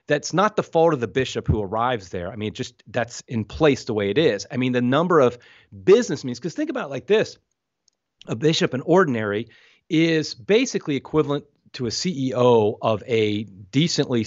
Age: 30-49